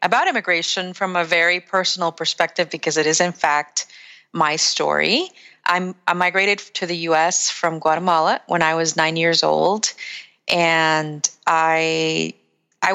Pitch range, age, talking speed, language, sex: 160-185 Hz, 30-49, 140 wpm, English, female